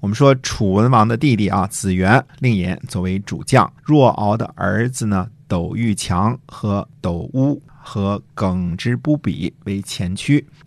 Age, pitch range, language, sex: 50-69, 100-135 Hz, Chinese, male